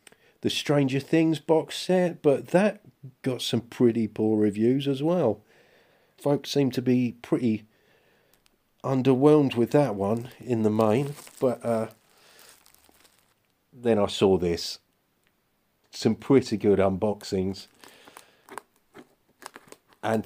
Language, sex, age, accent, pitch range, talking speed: English, male, 40-59, British, 100-140 Hz, 110 wpm